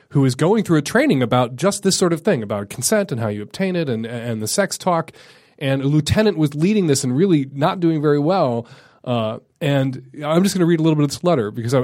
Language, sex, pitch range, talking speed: English, male, 125-165 Hz, 255 wpm